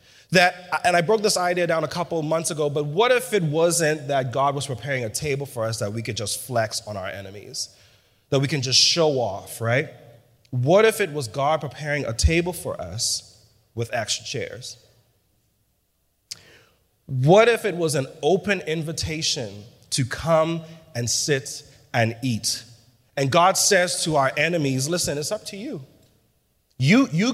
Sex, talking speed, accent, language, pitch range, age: male, 175 wpm, American, English, 115-170 Hz, 30-49